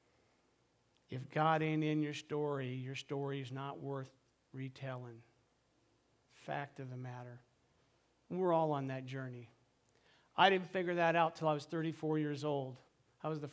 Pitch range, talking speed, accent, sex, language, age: 135-165 Hz, 155 wpm, American, male, English, 50-69